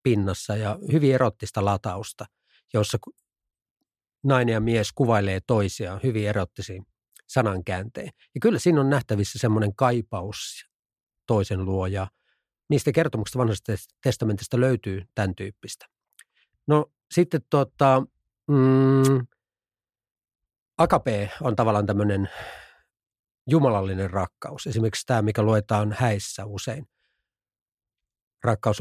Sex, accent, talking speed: male, native, 100 wpm